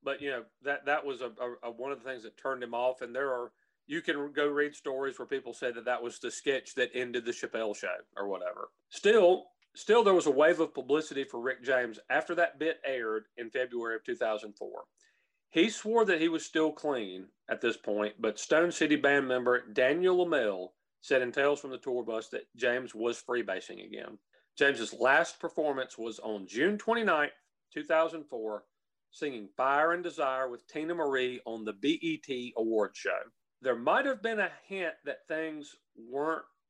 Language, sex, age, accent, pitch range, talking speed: English, male, 40-59, American, 125-175 Hz, 195 wpm